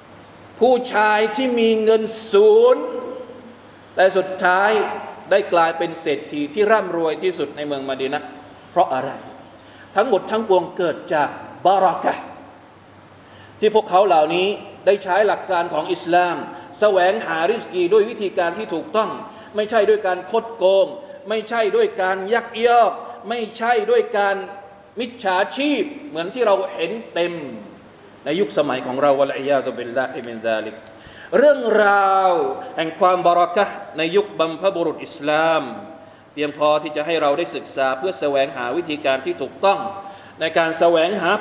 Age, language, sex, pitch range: 20-39, Thai, male, 150-215 Hz